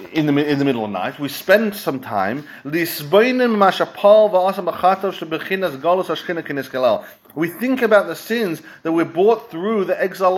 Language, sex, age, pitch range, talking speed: English, male, 30-49, 140-185 Hz, 135 wpm